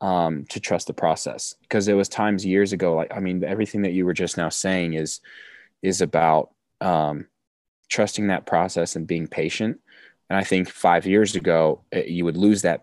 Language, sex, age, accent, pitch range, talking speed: English, male, 20-39, American, 85-95 Hz, 190 wpm